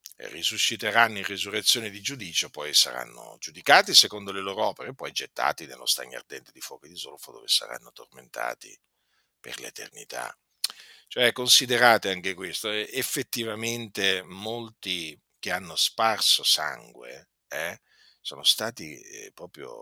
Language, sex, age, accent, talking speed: Italian, male, 50-69, native, 135 wpm